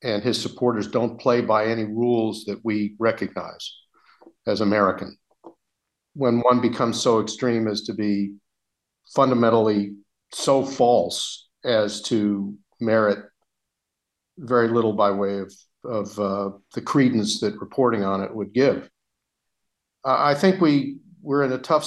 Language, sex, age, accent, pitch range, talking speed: English, male, 50-69, American, 105-120 Hz, 135 wpm